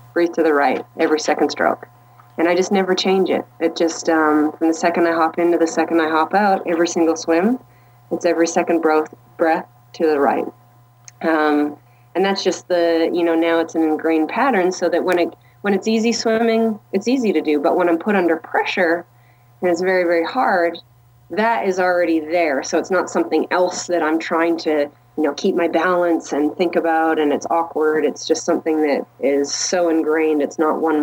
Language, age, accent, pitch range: English, 30-49, American, 150-170 Hz